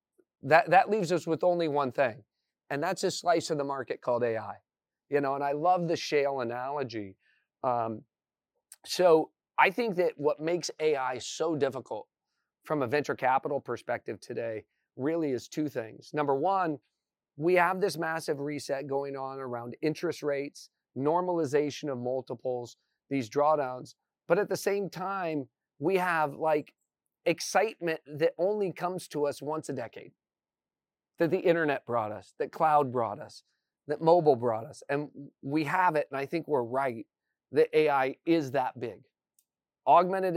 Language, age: English, 40-59